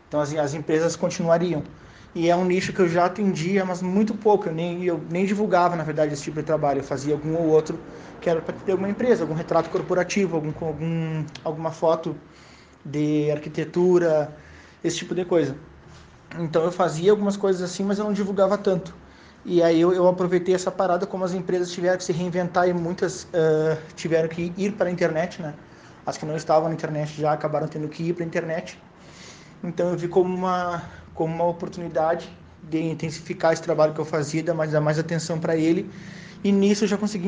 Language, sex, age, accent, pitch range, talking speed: Portuguese, male, 20-39, Brazilian, 160-185 Hz, 205 wpm